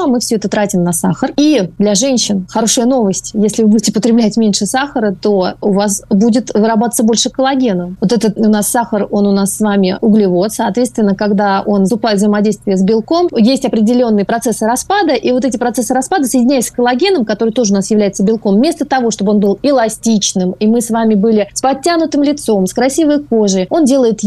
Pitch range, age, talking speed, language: 210-260 Hz, 30-49, 200 wpm, Russian